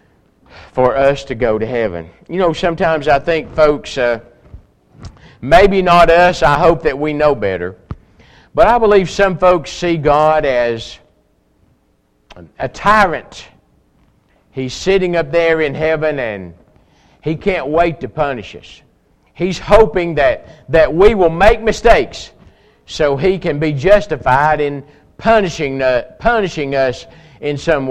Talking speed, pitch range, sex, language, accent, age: 145 wpm, 130-170 Hz, male, English, American, 50-69